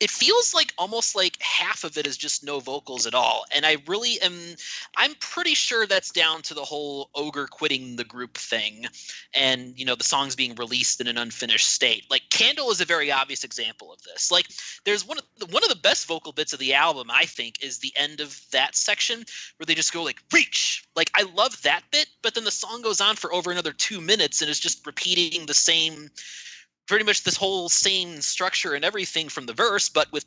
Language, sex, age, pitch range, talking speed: English, male, 20-39, 140-200 Hz, 220 wpm